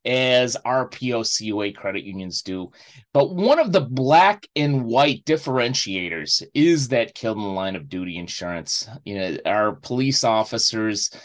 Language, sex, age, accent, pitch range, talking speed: English, male, 30-49, American, 105-135 Hz, 150 wpm